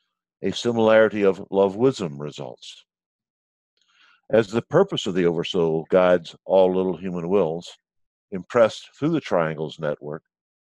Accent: American